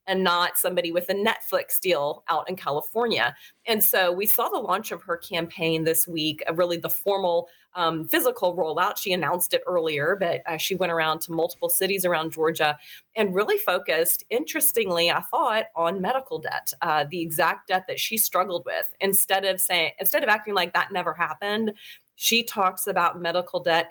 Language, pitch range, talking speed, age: English, 165-200 Hz, 185 wpm, 30-49